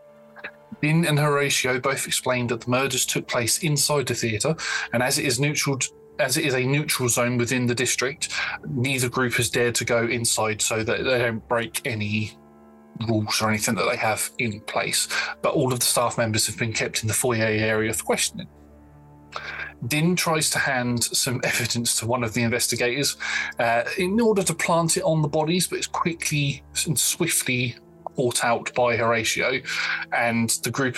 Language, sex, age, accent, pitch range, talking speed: English, male, 20-39, British, 115-140 Hz, 185 wpm